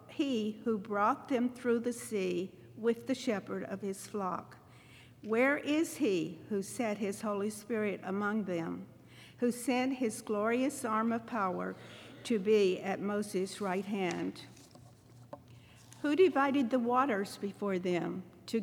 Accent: American